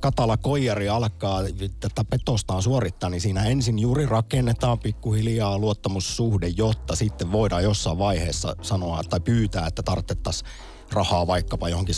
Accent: native